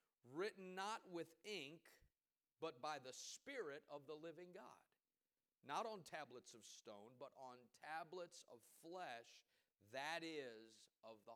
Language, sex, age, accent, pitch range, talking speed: English, male, 40-59, American, 125-175 Hz, 135 wpm